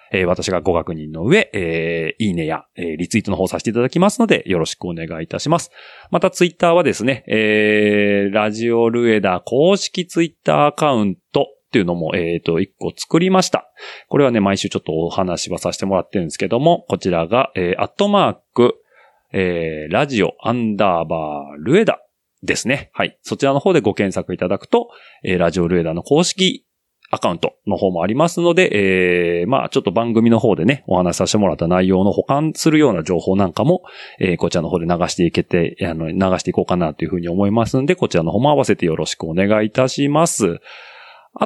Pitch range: 90-150 Hz